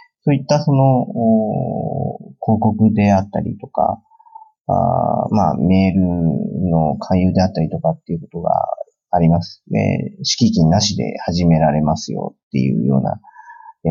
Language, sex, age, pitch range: Japanese, male, 40-59, 95-165 Hz